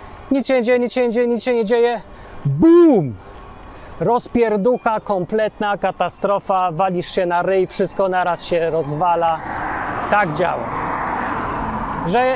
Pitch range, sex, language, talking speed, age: 180-240 Hz, male, Polish, 130 wpm, 30-49